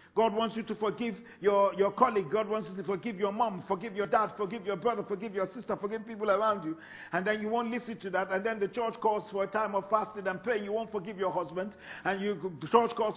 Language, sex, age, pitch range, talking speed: English, male, 50-69, 195-235 Hz, 255 wpm